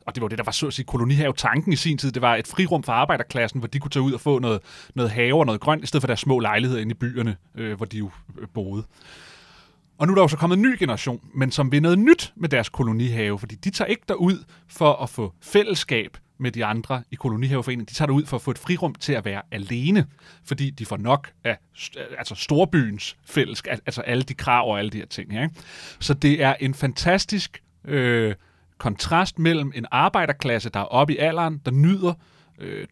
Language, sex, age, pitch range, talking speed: Danish, male, 30-49, 120-165 Hz, 230 wpm